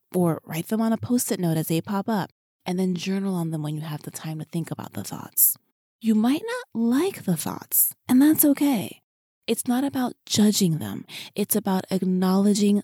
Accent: American